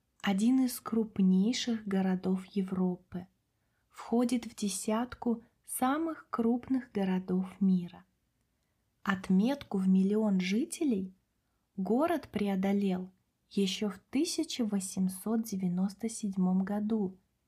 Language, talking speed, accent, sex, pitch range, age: Russian, 75 wpm, native, female, 185-230 Hz, 20-39